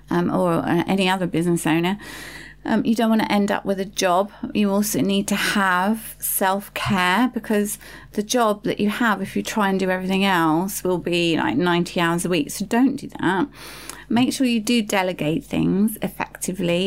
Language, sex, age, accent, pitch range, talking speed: English, female, 30-49, British, 180-225 Hz, 190 wpm